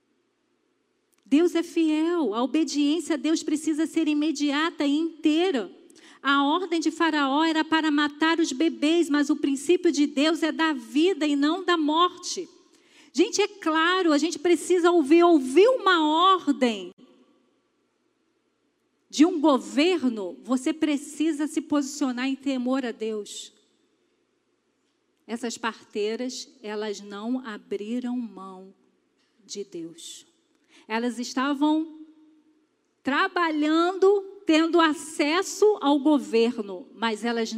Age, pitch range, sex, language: 40-59, 245-340 Hz, female, Portuguese